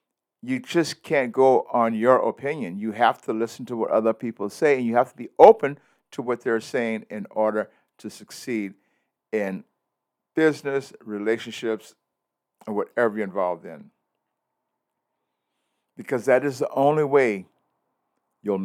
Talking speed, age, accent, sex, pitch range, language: 145 wpm, 60-79, American, male, 110-140 Hz, English